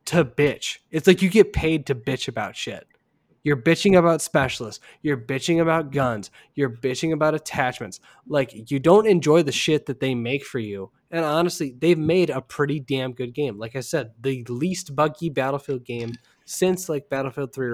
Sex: male